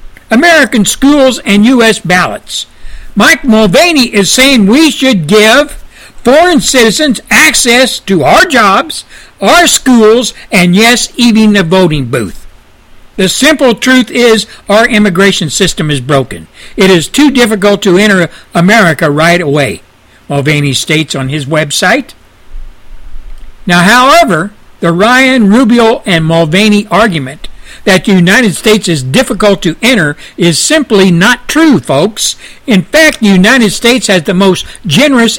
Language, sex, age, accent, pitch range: Japanese, male, 60-79, American, 175-245 Hz